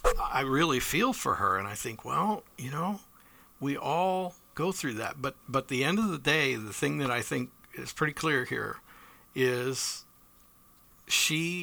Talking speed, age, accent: 175 wpm, 50-69, American